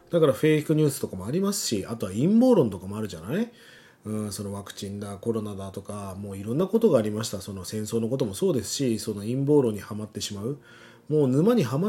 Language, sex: Japanese, male